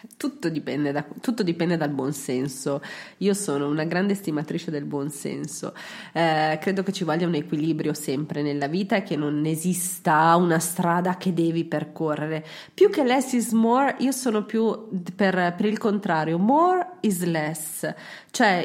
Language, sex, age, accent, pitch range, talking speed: Italian, female, 30-49, native, 160-215 Hz, 165 wpm